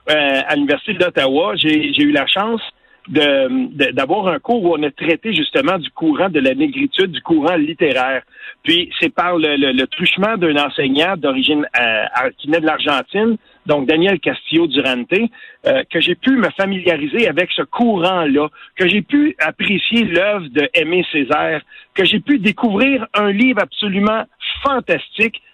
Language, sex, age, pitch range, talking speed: French, male, 50-69, 175-260 Hz, 165 wpm